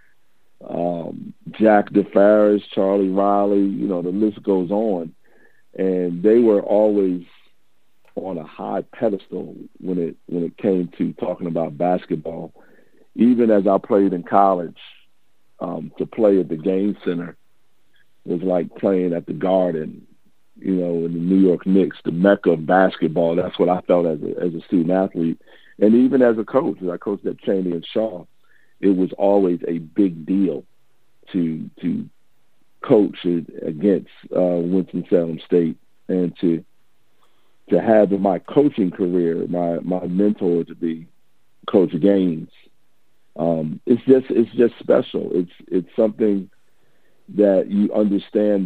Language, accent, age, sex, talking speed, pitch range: English, American, 50-69, male, 150 wpm, 85-100 Hz